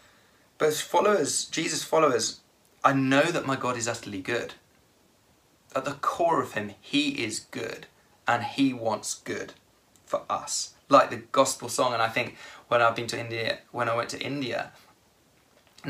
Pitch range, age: 115-140 Hz, 20-39